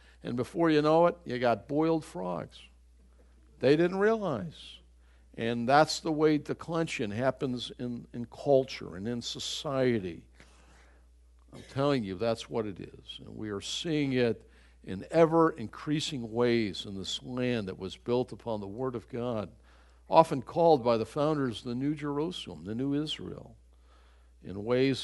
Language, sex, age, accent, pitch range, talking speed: English, male, 60-79, American, 100-150 Hz, 160 wpm